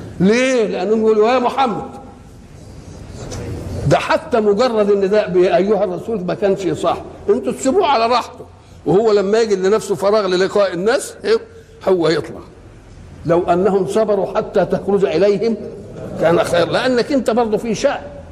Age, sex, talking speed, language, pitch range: 60-79, male, 130 wpm, Arabic, 150-210 Hz